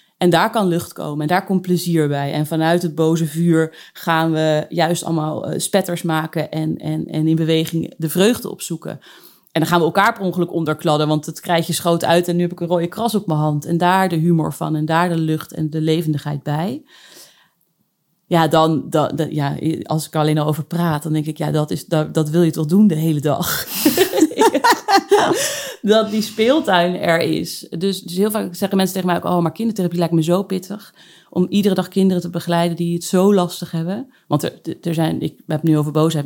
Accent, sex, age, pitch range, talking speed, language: Dutch, female, 30-49, 155-180 Hz, 220 wpm, Dutch